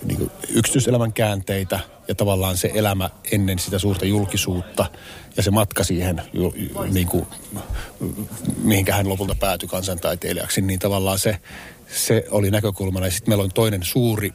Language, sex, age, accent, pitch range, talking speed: Finnish, male, 30-49, native, 90-105 Hz, 135 wpm